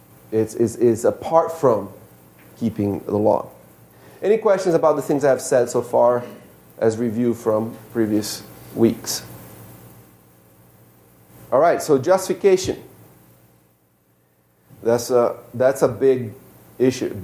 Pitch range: 90-135 Hz